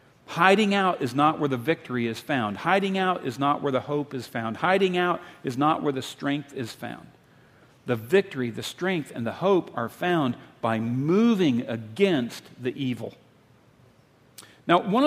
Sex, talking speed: male, 170 wpm